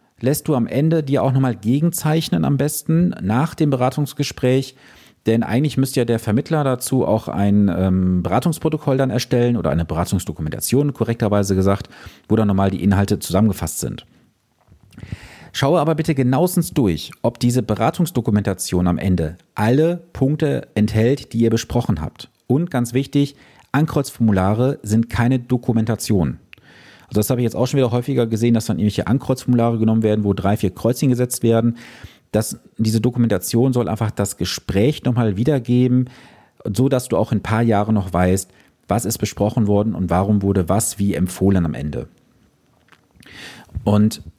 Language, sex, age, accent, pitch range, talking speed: German, male, 40-59, German, 100-130 Hz, 155 wpm